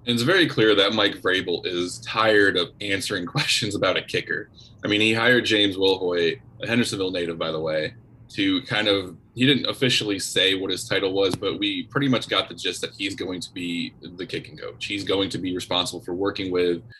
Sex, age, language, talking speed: male, 20-39, English, 210 wpm